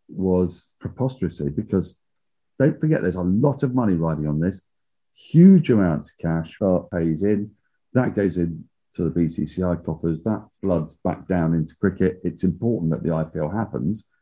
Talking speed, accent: 165 wpm, British